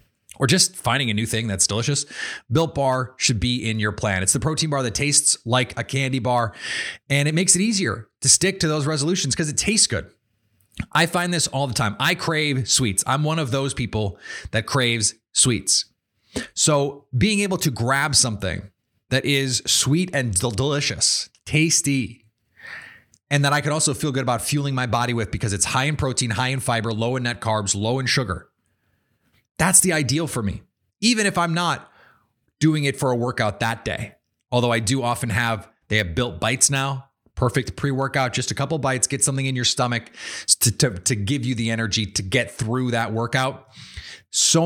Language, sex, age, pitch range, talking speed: English, male, 30-49, 115-145 Hz, 195 wpm